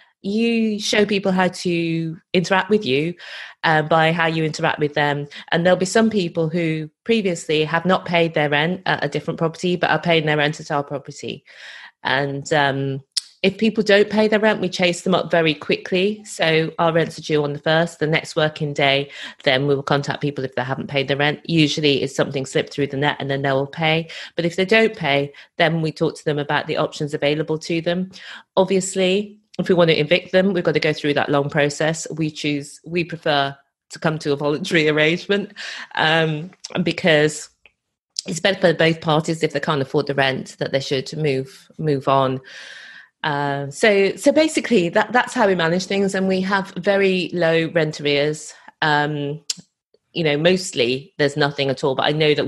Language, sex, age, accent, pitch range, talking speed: English, female, 30-49, British, 145-180 Hz, 200 wpm